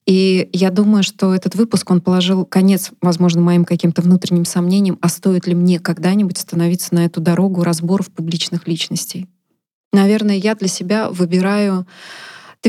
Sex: female